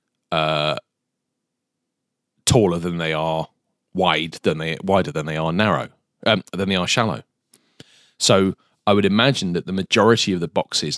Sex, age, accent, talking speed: male, 30-49, British, 155 wpm